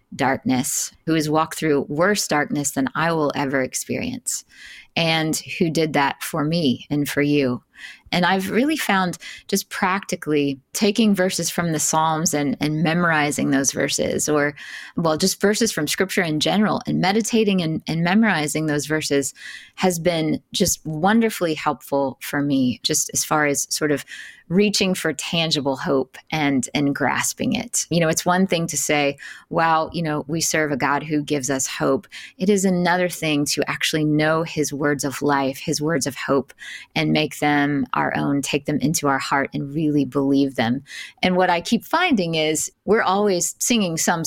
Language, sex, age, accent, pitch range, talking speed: English, female, 20-39, American, 145-185 Hz, 175 wpm